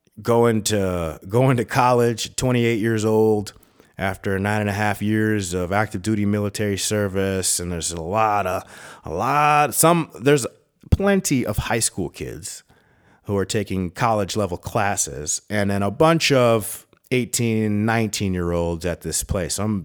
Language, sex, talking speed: English, male, 165 wpm